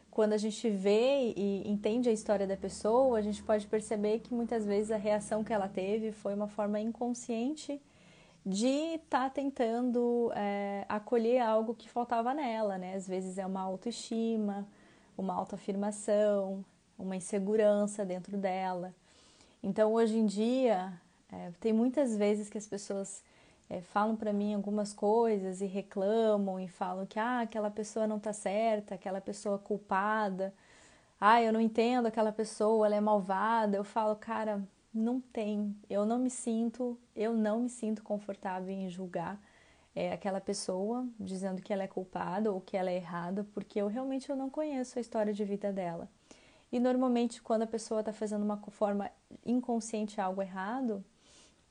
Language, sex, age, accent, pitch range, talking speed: English, female, 20-39, Brazilian, 200-230 Hz, 160 wpm